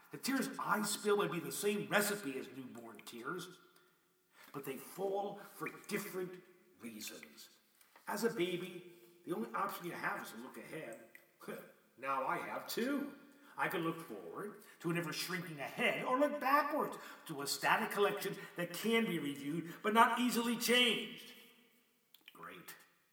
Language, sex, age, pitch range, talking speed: English, male, 50-69, 165-225 Hz, 155 wpm